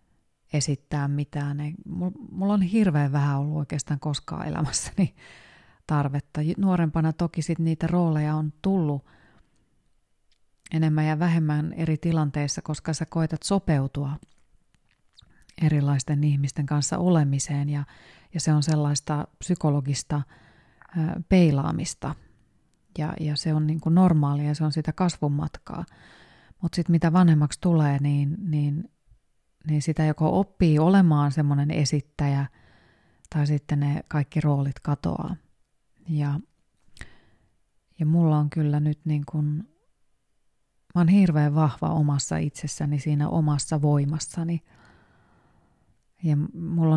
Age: 30-49